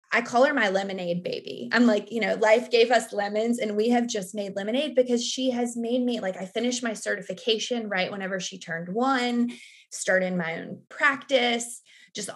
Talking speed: 195 wpm